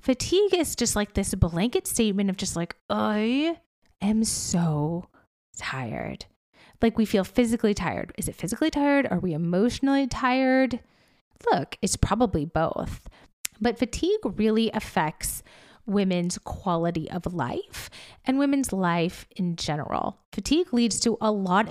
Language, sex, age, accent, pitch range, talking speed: English, female, 20-39, American, 185-255 Hz, 135 wpm